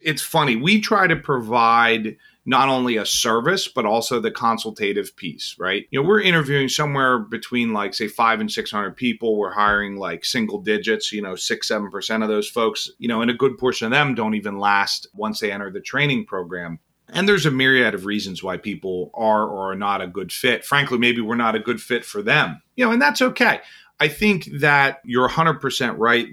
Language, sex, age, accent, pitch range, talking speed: English, male, 30-49, American, 110-150 Hz, 215 wpm